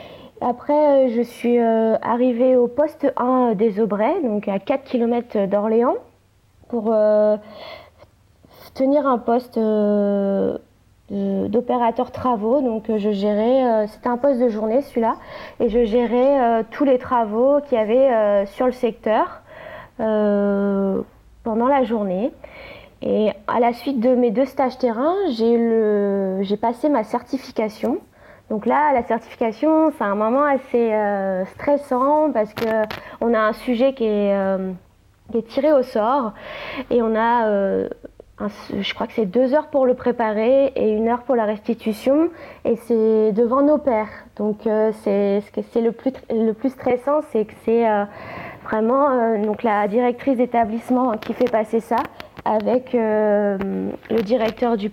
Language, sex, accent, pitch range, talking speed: French, female, French, 215-260 Hz, 145 wpm